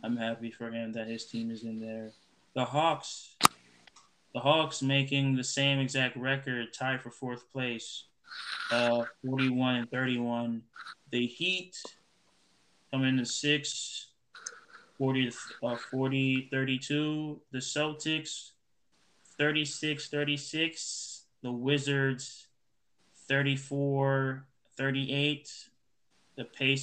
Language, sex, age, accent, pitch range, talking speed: English, male, 20-39, American, 120-135 Hz, 100 wpm